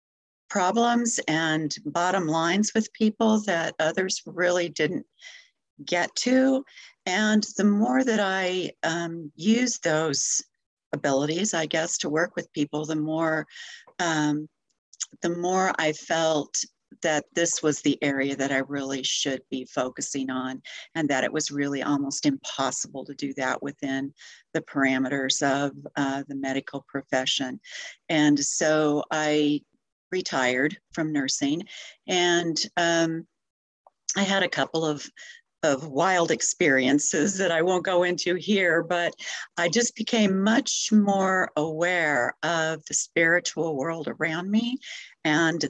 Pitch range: 145-190 Hz